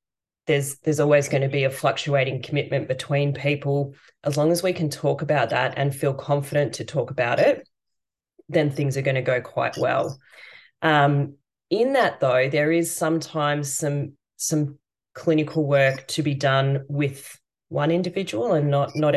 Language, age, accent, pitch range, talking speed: English, 20-39, Australian, 135-155 Hz, 170 wpm